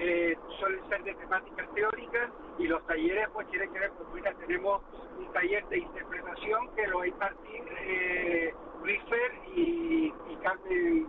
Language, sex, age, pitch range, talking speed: Spanish, male, 50-69, 175-245 Hz, 155 wpm